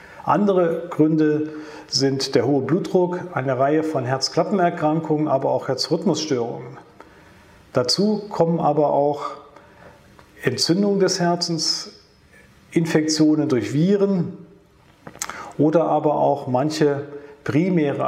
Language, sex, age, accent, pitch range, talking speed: German, male, 40-59, German, 135-165 Hz, 95 wpm